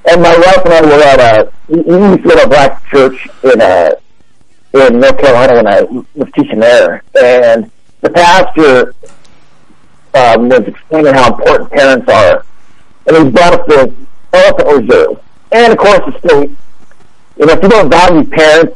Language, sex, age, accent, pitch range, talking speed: English, male, 60-79, American, 145-225 Hz, 175 wpm